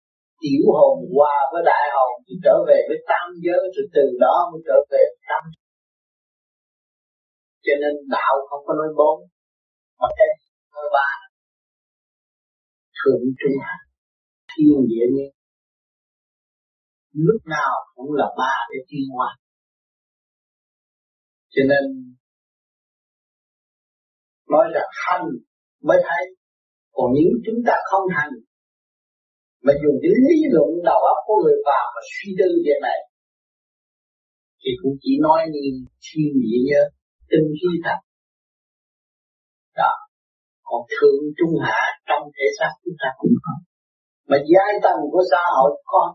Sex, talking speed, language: male, 135 wpm, Vietnamese